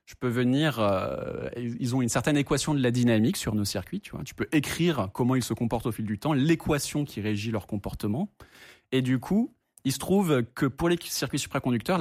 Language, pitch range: French, 120-165 Hz